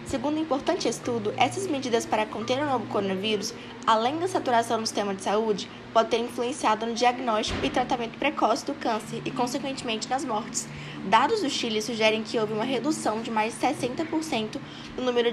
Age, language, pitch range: 10-29, Portuguese, 220-270 Hz